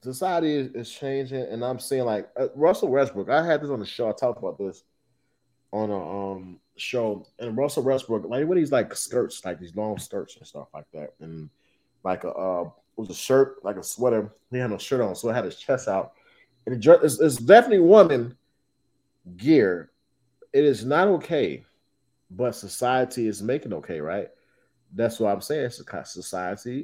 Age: 30-49